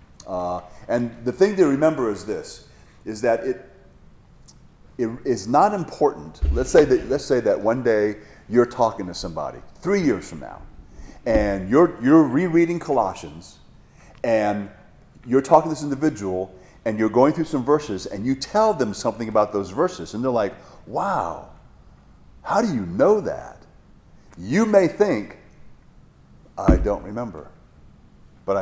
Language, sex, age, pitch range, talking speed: English, male, 40-59, 90-135 Hz, 145 wpm